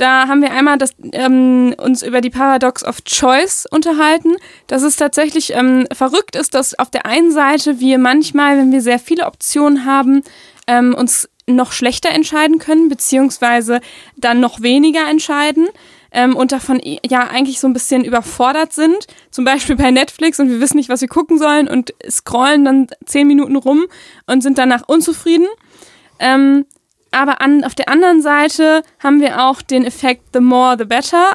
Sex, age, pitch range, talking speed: female, 20-39, 250-305 Hz, 175 wpm